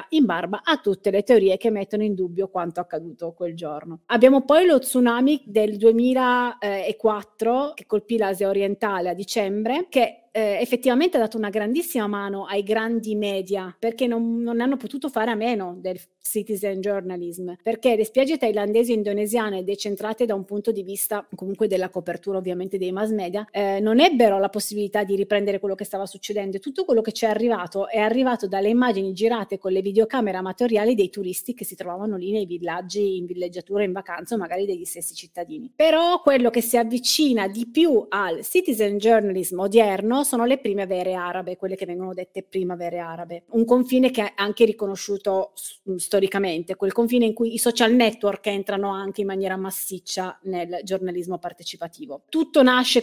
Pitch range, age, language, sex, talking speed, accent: 190-230 Hz, 30-49, Italian, female, 180 wpm, native